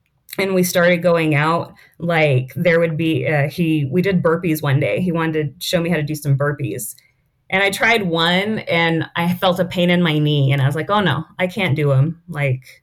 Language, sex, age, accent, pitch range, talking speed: English, female, 30-49, American, 145-180 Hz, 225 wpm